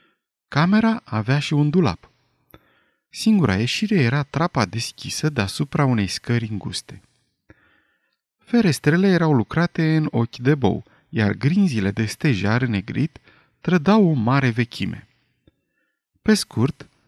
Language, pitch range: Romanian, 110-165 Hz